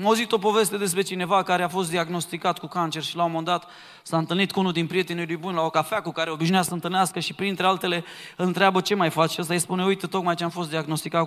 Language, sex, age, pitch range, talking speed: Romanian, male, 20-39, 155-195 Hz, 265 wpm